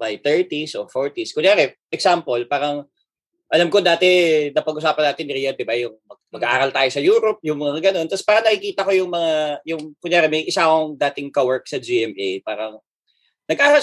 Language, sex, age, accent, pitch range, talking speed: Filipino, male, 20-39, native, 150-220 Hz, 165 wpm